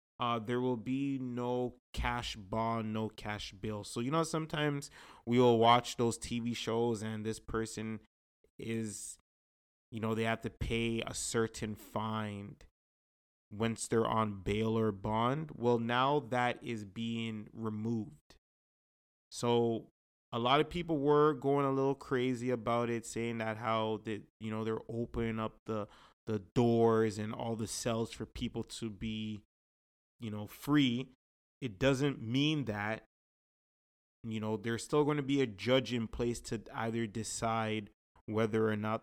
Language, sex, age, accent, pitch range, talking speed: English, male, 20-39, American, 110-125 Hz, 155 wpm